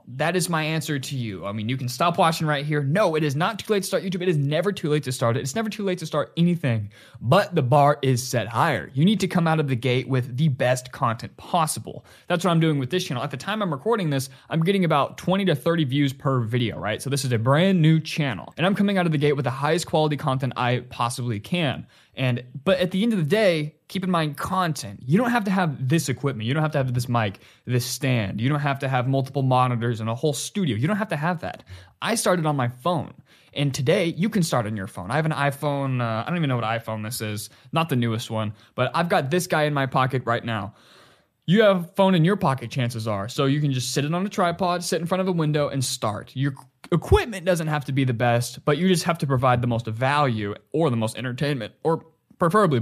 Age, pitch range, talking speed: 20-39, 125-175 Hz, 270 wpm